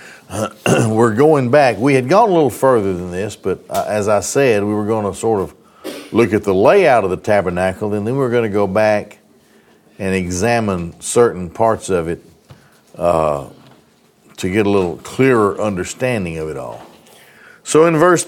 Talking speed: 175 wpm